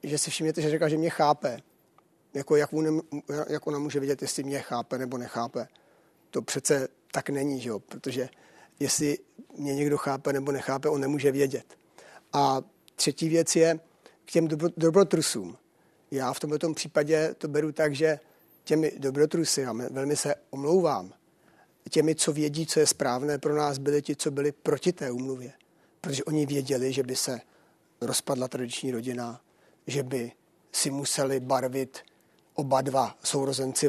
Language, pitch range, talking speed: Czech, 135-155 Hz, 160 wpm